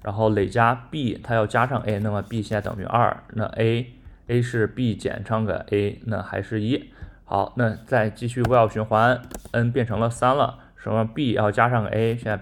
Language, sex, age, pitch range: Chinese, male, 20-39, 105-120 Hz